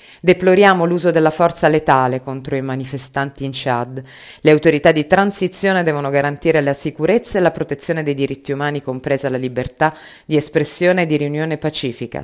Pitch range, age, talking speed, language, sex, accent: 135-165 Hz, 30-49, 160 wpm, Italian, female, native